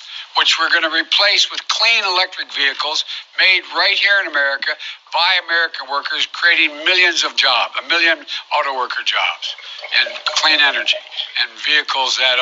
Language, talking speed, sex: English, 150 wpm, male